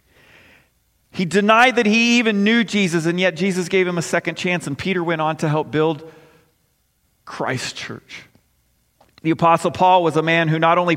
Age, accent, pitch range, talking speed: 40-59, American, 160-205 Hz, 180 wpm